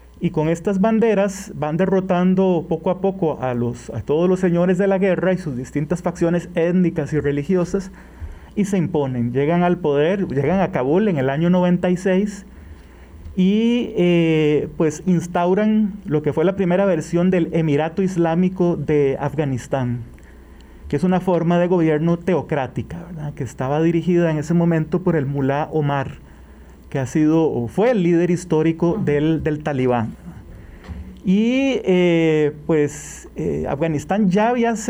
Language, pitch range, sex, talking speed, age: Spanish, 145-190 Hz, male, 155 wpm, 30-49